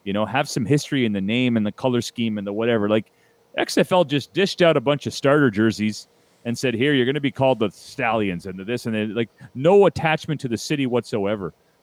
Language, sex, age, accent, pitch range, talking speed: English, male, 40-59, American, 115-160 Hz, 240 wpm